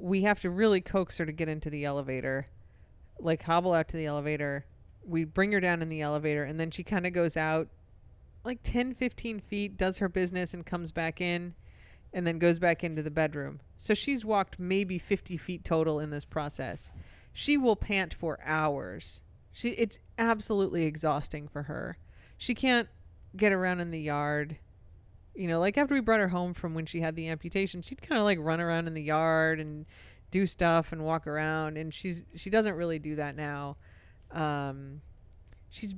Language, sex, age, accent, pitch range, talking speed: English, female, 30-49, American, 145-185 Hz, 195 wpm